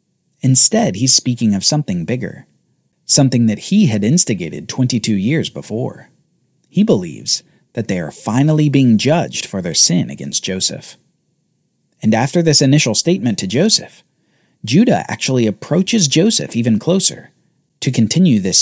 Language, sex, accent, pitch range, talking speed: English, male, American, 115-170 Hz, 140 wpm